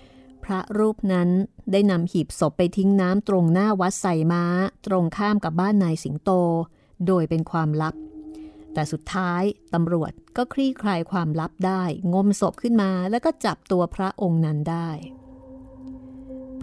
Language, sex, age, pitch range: Thai, female, 30-49, 165-205 Hz